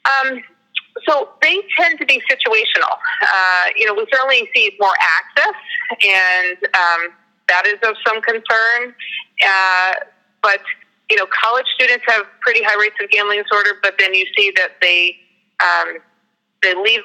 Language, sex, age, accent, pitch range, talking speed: English, female, 30-49, American, 180-270 Hz, 155 wpm